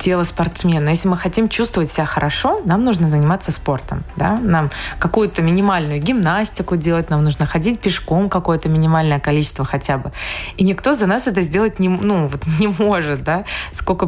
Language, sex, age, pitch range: Russian, female, 20-39, 160-200 Hz